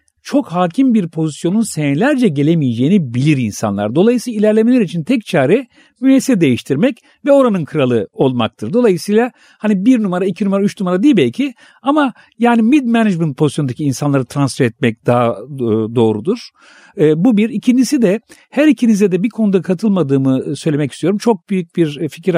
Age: 50-69